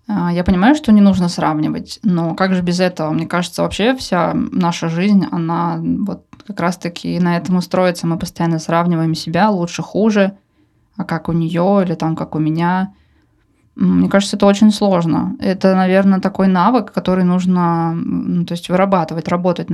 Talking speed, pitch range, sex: 165 wpm, 175-200 Hz, female